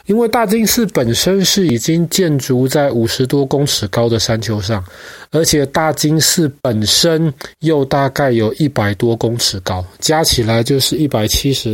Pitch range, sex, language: 110-150 Hz, male, Chinese